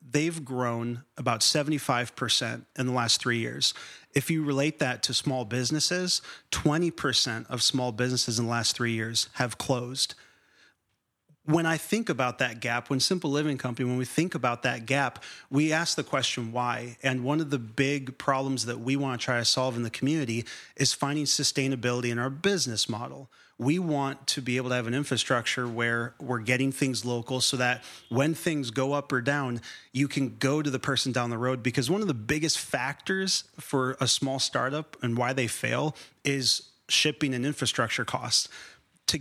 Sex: male